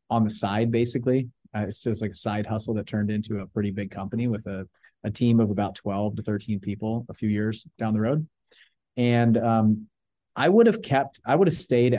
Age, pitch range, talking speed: 30-49, 105-120 Hz, 220 wpm